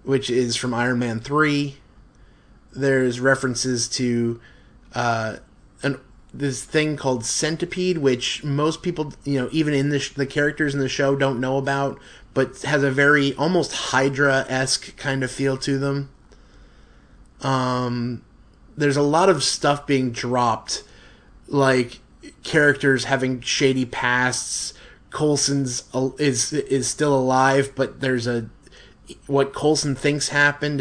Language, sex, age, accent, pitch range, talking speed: English, male, 20-39, American, 125-145 Hz, 135 wpm